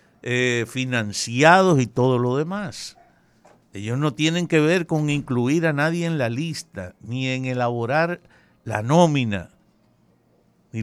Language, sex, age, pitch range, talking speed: Spanish, male, 60-79, 115-155 Hz, 135 wpm